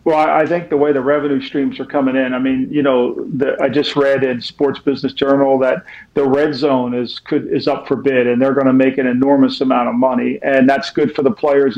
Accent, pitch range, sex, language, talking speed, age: American, 135-155 Hz, male, English, 240 wpm, 50-69